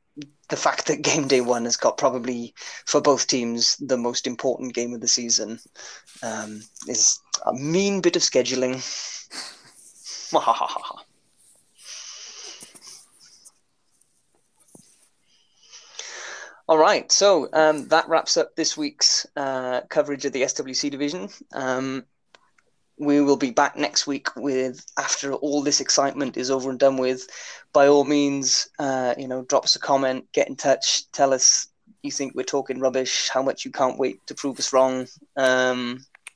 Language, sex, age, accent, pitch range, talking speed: English, male, 20-39, British, 125-145 Hz, 145 wpm